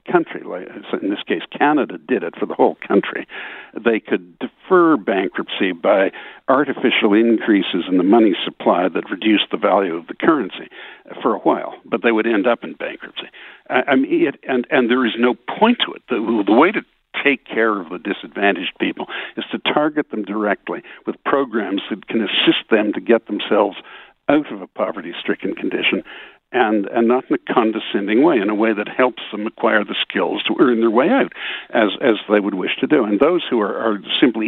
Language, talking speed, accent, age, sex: English, 195 wpm, American, 60-79, male